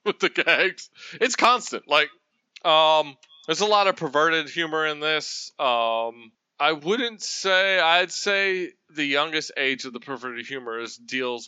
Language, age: English, 20-39